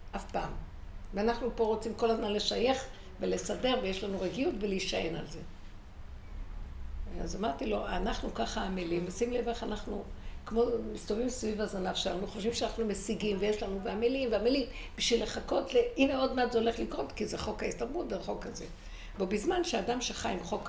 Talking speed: 170 wpm